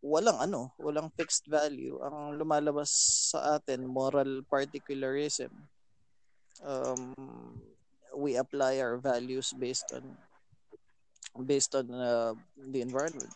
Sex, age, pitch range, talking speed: male, 20-39, 125-150 Hz, 105 wpm